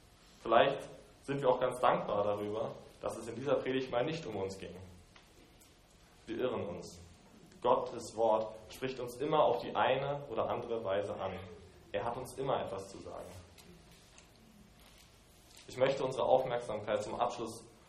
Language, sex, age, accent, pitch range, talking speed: German, male, 20-39, German, 100-130 Hz, 150 wpm